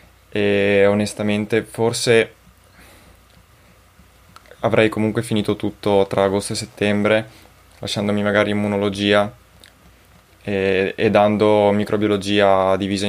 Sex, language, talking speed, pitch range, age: male, Italian, 85 wpm, 95-105 Hz, 20-39